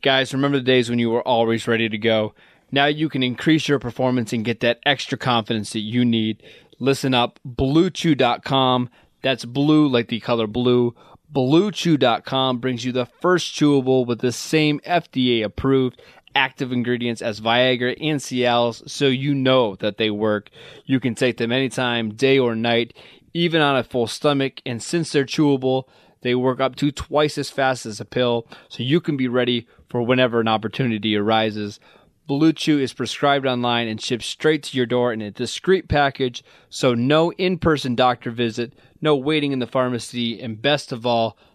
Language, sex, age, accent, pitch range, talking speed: English, male, 20-39, American, 120-140 Hz, 175 wpm